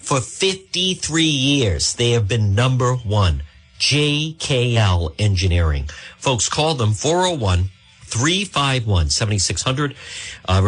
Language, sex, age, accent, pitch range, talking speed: English, male, 50-69, American, 100-150 Hz, 80 wpm